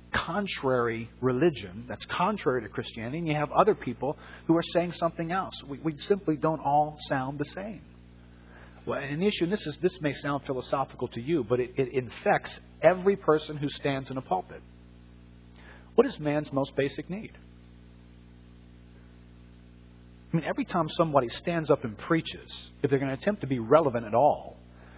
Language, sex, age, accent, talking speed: English, male, 40-59, American, 175 wpm